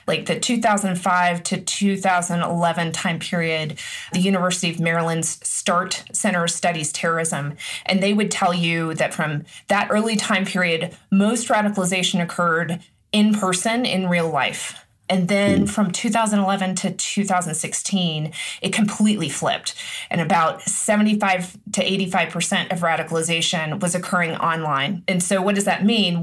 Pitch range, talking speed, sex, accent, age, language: 175-200 Hz, 135 wpm, female, American, 20-39, English